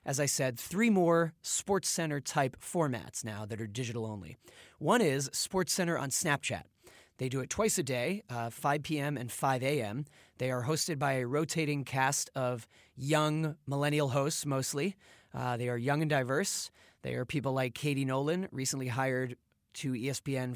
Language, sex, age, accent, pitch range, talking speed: English, male, 30-49, American, 125-160 Hz, 165 wpm